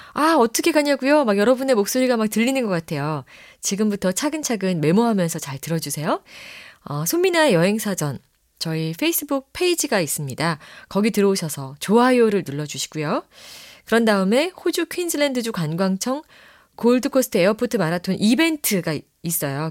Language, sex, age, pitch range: Korean, female, 30-49, 170-255 Hz